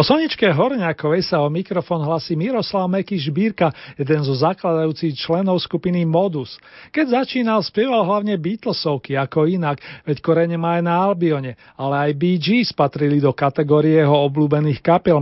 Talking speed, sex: 145 wpm, male